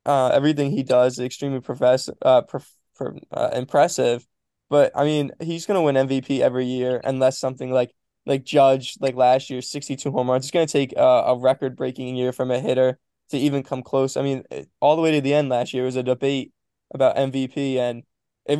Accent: American